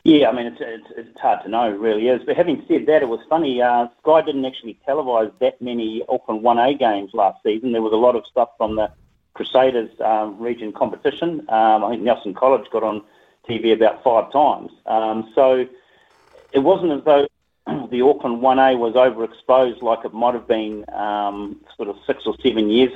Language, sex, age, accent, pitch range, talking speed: English, male, 40-59, Australian, 105-130 Hz, 200 wpm